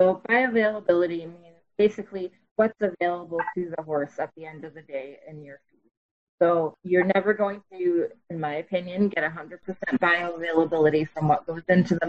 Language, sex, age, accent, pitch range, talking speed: English, female, 20-39, American, 155-185 Hz, 170 wpm